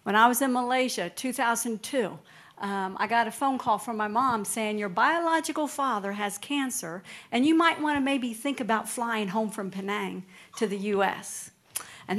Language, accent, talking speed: English, American, 180 wpm